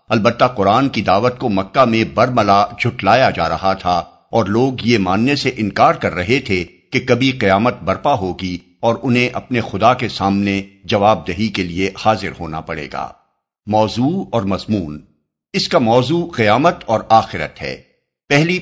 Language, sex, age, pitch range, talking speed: Urdu, male, 60-79, 95-130 Hz, 165 wpm